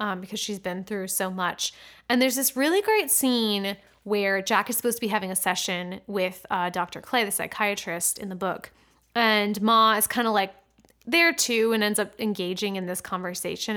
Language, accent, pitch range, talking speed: English, American, 190-235 Hz, 200 wpm